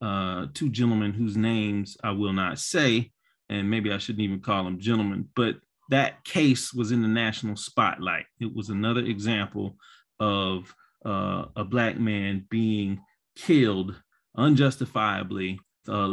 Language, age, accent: English, 30-49, American